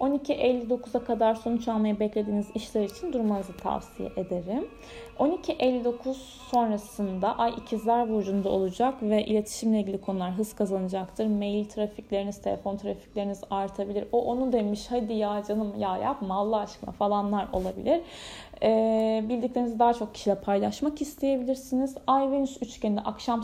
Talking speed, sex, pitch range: 130 wpm, female, 205-265 Hz